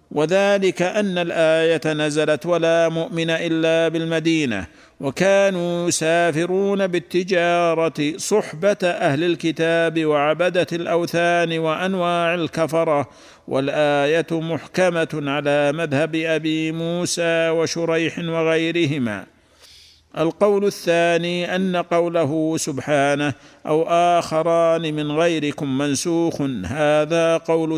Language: Arabic